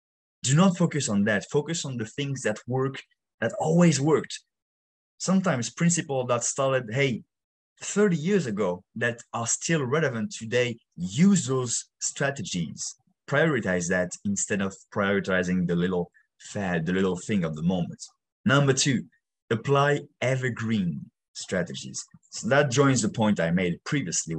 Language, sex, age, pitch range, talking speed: English, male, 30-49, 110-170 Hz, 140 wpm